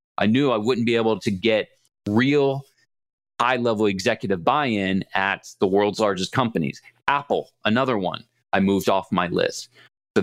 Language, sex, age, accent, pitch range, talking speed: English, male, 30-49, American, 95-120 Hz, 155 wpm